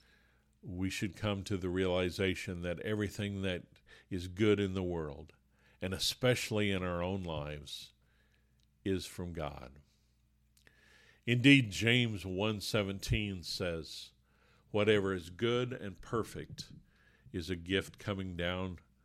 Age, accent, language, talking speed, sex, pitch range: 50-69, American, English, 115 wpm, male, 80-105 Hz